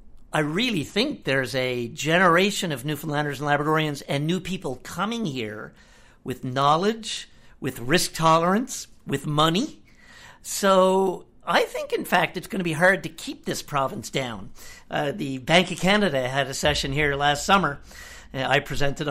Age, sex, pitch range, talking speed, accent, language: 50-69, male, 140-200 Hz, 155 wpm, American, English